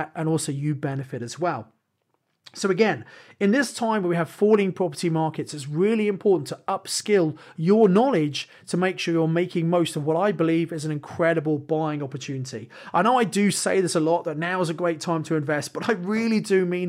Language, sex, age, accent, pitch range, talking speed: English, male, 30-49, British, 155-190 Hz, 215 wpm